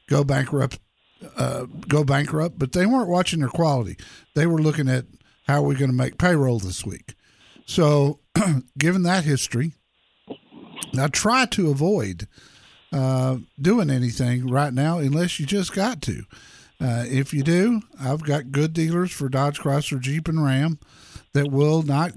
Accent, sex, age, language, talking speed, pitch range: American, male, 50-69, English, 160 wpm, 135-175 Hz